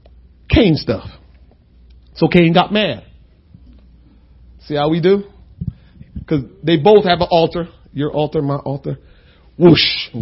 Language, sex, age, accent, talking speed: English, male, 40-59, American, 130 wpm